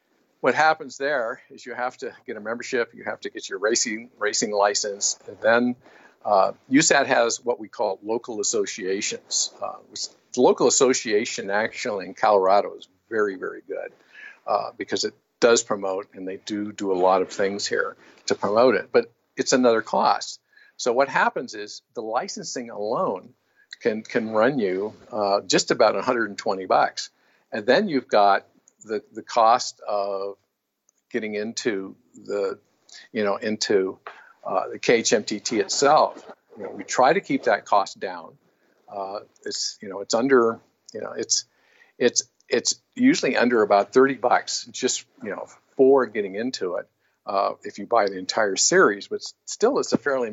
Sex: male